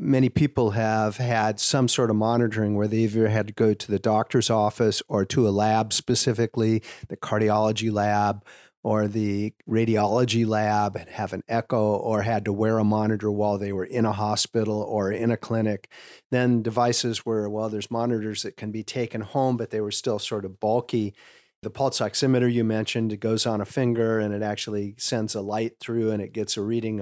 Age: 40-59